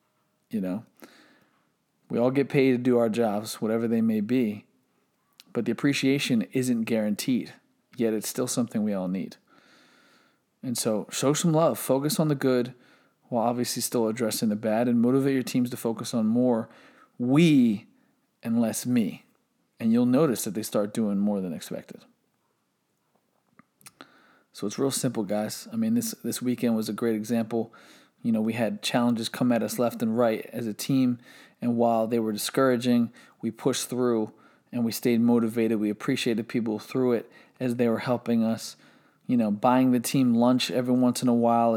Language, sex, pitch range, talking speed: English, male, 115-135 Hz, 180 wpm